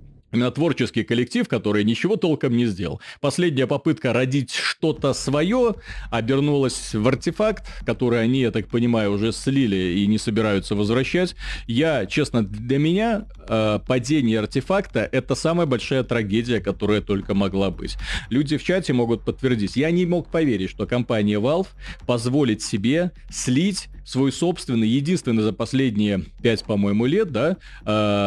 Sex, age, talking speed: male, 30-49, 140 wpm